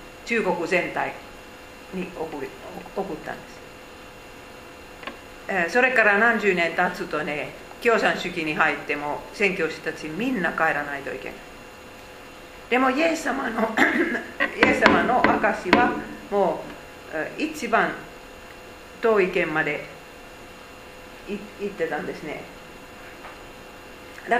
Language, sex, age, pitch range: Japanese, female, 50-69, 175-255 Hz